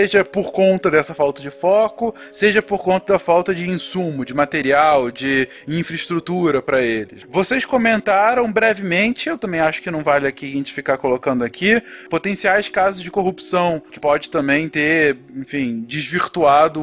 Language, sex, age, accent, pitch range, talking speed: Portuguese, male, 20-39, Brazilian, 145-190 Hz, 160 wpm